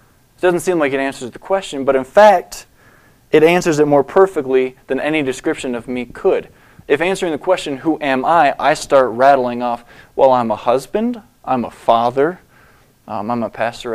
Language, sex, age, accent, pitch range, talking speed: English, male, 20-39, American, 130-165 Hz, 190 wpm